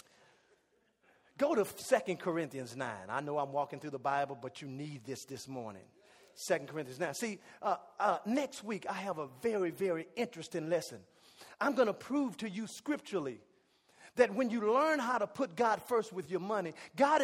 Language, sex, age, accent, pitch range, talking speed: English, male, 40-59, American, 190-255 Hz, 185 wpm